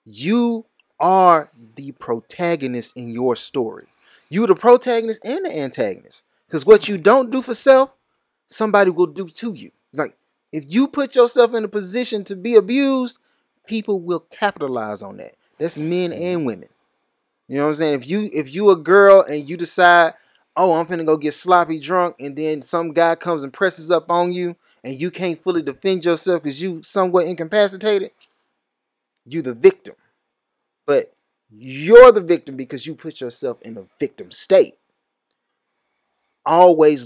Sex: male